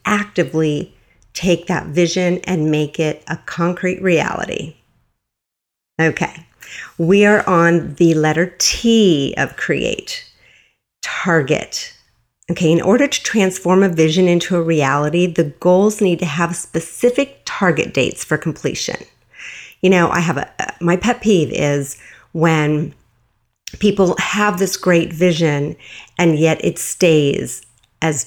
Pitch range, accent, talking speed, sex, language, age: 155-210 Hz, American, 125 wpm, female, English, 50-69